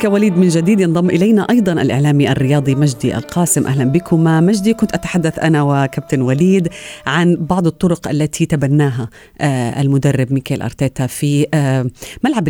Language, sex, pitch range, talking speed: Arabic, female, 145-195 Hz, 135 wpm